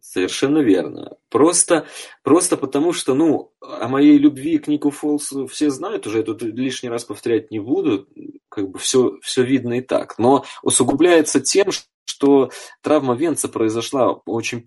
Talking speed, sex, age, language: 155 wpm, male, 20-39, Russian